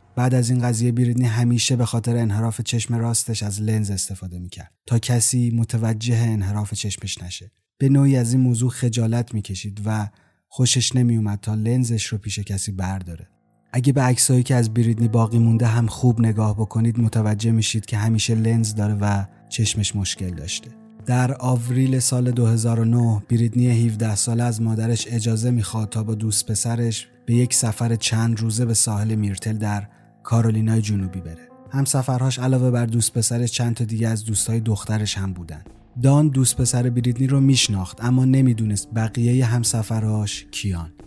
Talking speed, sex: 165 wpm, male